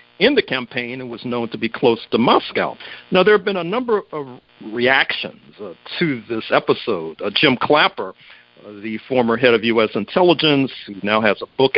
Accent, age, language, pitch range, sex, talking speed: American, 50-69, English, 115-160 Hz, male, 195 wpm